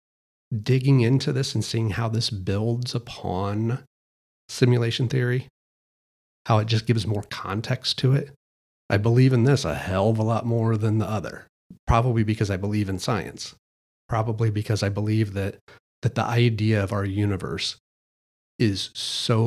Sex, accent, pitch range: male, American, 100-125 Hz